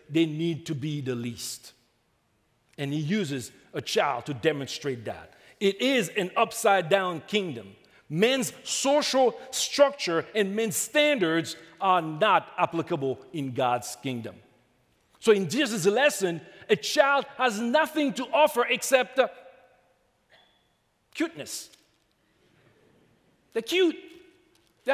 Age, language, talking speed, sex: 50-69, English, 115 wpm, male